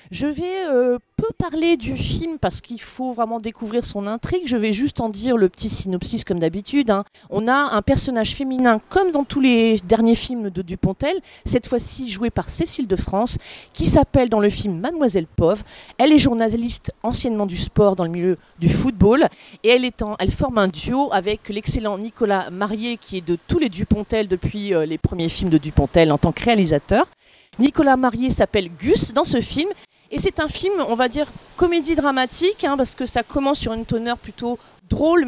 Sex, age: female, 40-59